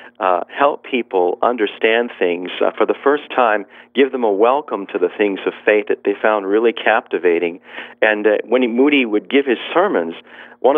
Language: English